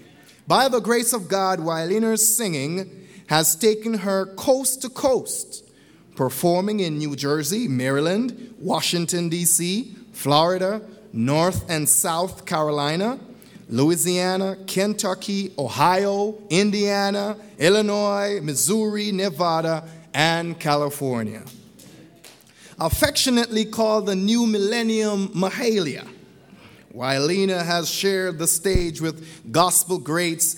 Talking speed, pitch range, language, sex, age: 95 wpm, 155-205 Hz, English, male, 30-49